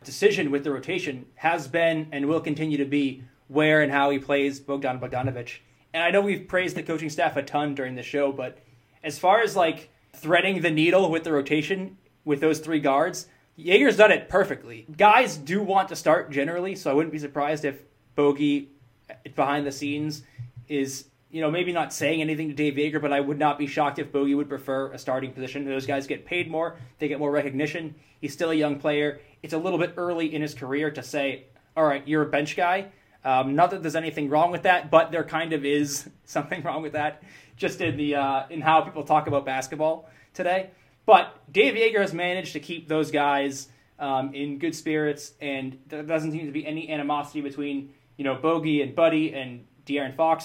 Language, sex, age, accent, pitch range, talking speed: English, male, 20-39, American, 140-165 Hz, 210 wpm